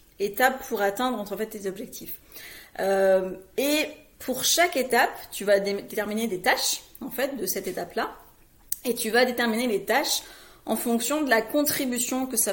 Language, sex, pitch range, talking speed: French, female, 200-250 Hz, 175 wpm